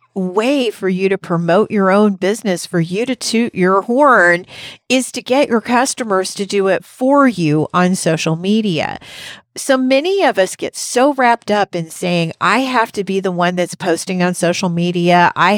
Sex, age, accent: female, 50-69, American